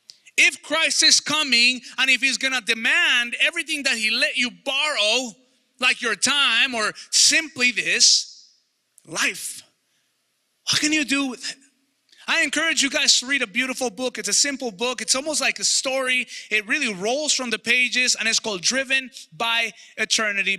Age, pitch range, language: 30-49, 195-260 Hz, English